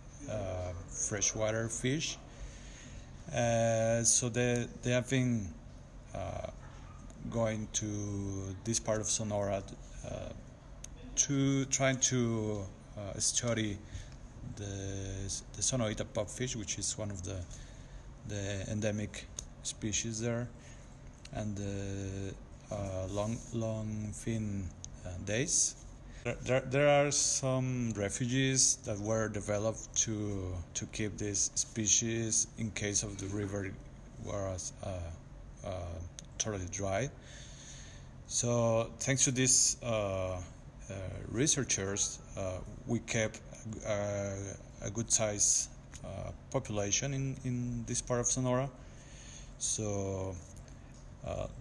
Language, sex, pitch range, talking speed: English, male, 100-125 Hz, 105 wpm